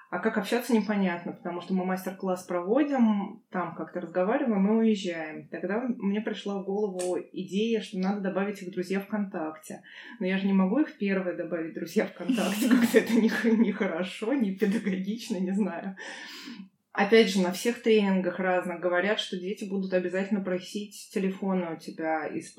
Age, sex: 20-39, female